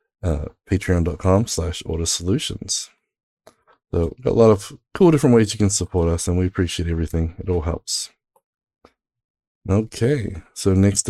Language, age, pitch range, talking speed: English, 20-39, 85-105 Hz, 150 wpm